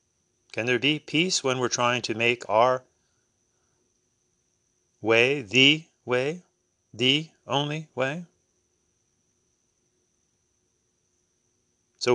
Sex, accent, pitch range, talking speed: male, American, 120-160 Hz, 85 wpm